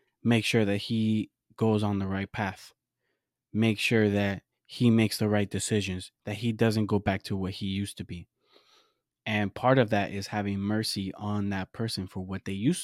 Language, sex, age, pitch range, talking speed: English, male, 20-39, 100-115 Hz, 195 wpm